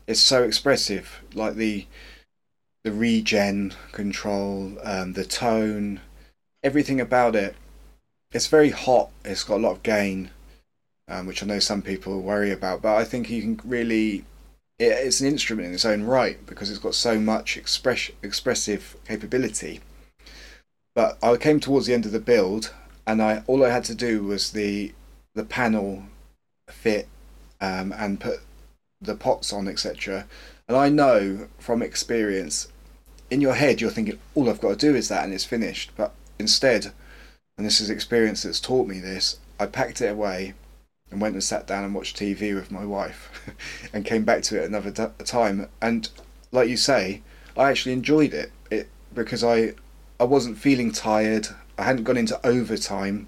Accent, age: British, 20-39